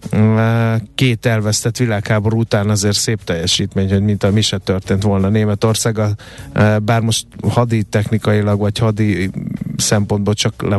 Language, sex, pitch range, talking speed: Hungarian, male, 105-120 Hz, 135 wpm